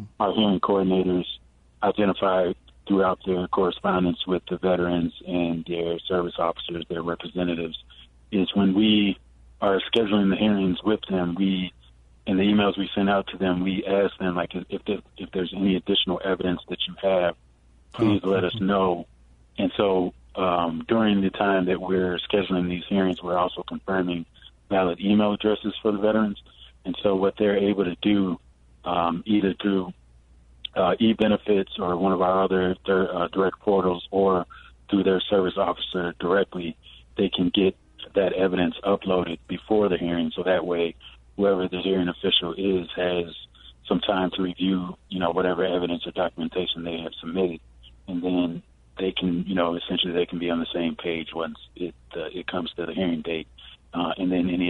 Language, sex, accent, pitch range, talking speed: English, male, American, 85-95 Hz, 170 wpm